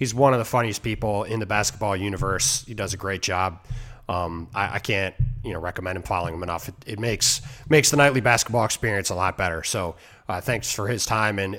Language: English